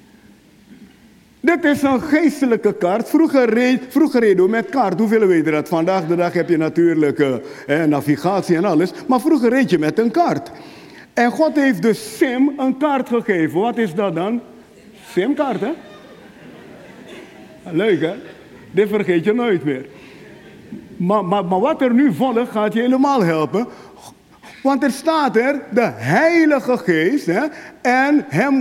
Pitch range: 190-275 Hz